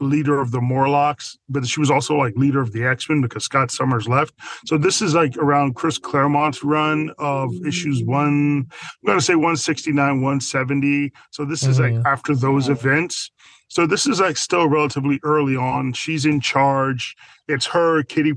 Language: English